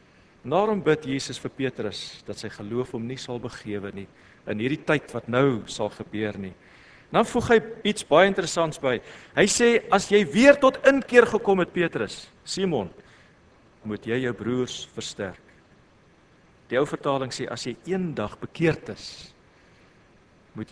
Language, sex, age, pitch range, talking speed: English, male, 50-69, 135-225 Hz, 155 wpm